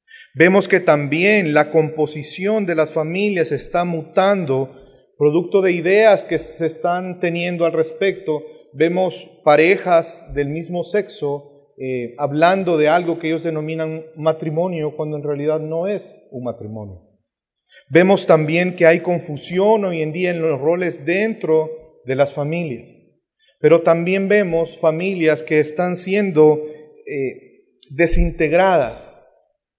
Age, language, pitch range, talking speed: 40-59, Spanish, 150-180 Hz, 125 wpm